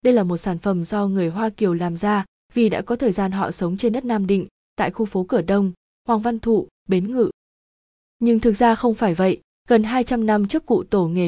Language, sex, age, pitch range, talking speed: Vietnamese, female, 20-39, 185-230 Hz, 240 wpm